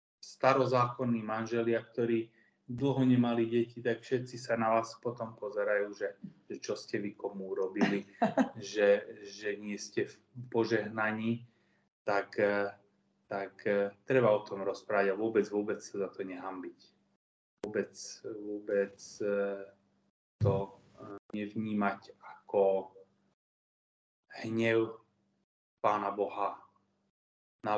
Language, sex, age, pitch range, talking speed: Slovak, male, 20-39, 105-125 Hz, 105 wpm